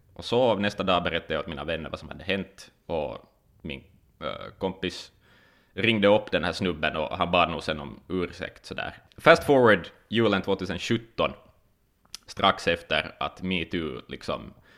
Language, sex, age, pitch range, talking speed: Finnish, male, 20-39, 90-100 Hz, 160 wpm